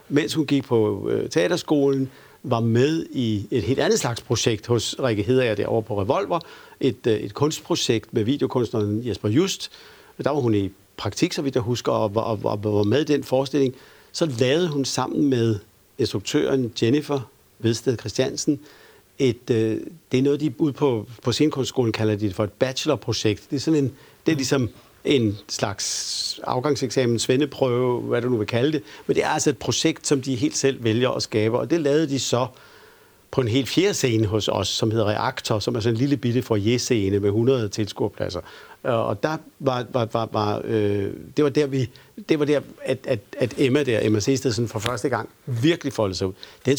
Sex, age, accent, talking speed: male, 60-79, native, 195 wpm